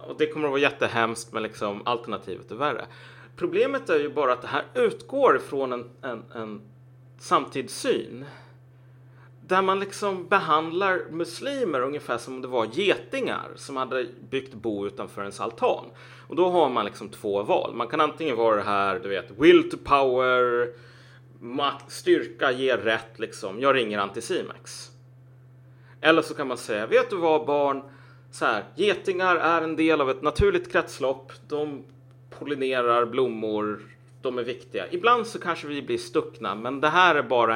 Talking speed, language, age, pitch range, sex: 165 wpm, Swedish, 30-49, 125-155 Hz, male